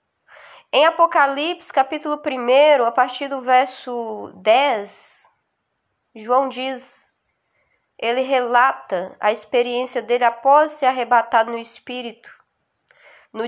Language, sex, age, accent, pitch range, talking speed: Portuguese, female, 10-29, Brazilian, 235-290 Hz, 100 wpm